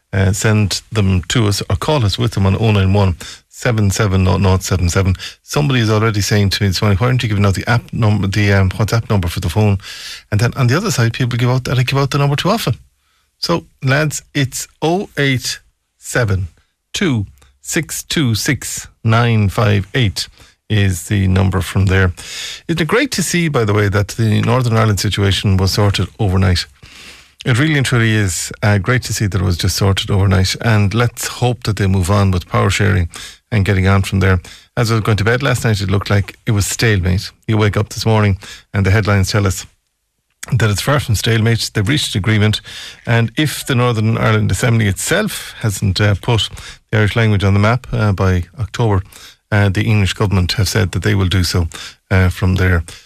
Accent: Irish